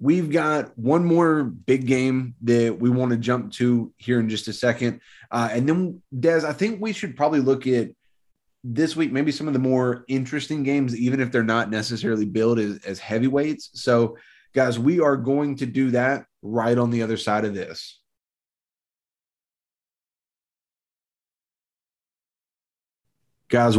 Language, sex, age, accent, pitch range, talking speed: English, male, 30-49, American, 110-130 Hz, 155 wpm